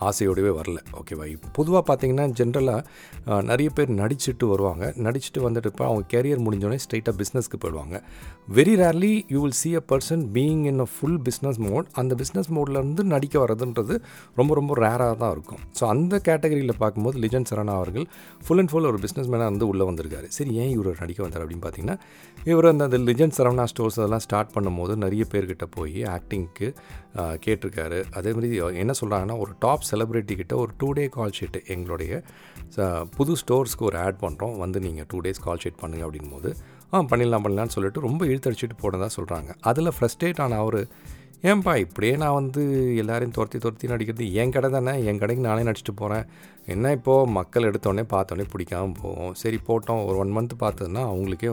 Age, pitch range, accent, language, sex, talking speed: 40-59, 100-135 Hz, native, Tamil, male, 170 wpm